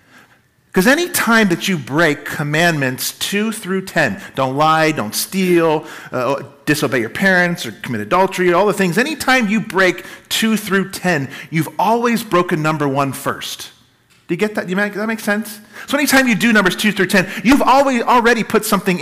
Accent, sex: American, male